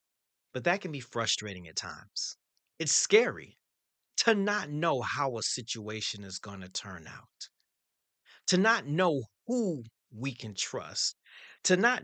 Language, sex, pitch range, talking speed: English, male, 115-160 Hz, 145 wpm